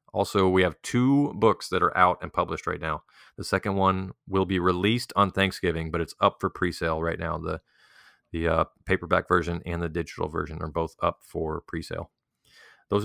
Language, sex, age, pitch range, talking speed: English, male, 30-49, 85-95 Hz, 195 wpm